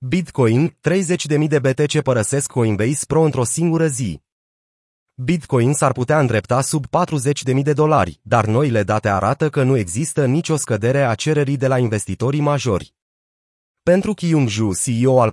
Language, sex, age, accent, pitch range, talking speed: Romanian, male, 30-49, native, 115-150 Hz, 155 wpm